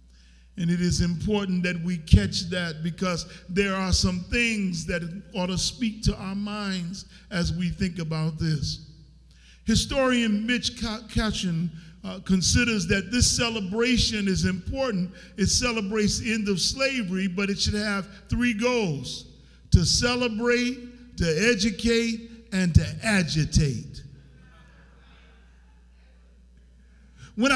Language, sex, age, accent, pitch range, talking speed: English, male, 50-69, American, 165-235 Hz, 120 wpm